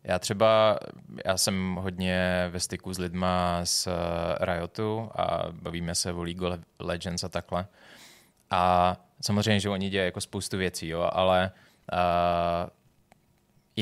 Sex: male